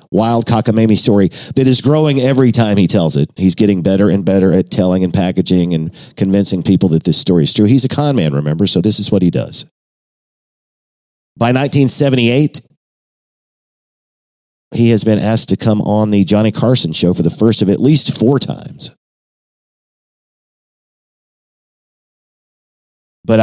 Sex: male